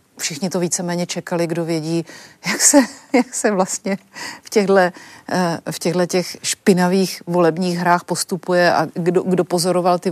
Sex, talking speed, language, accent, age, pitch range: female, 150 wpm, Czech, native, 40-59, 170-190 Hz